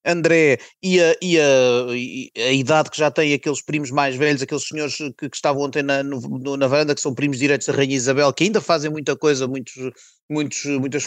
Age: 30-49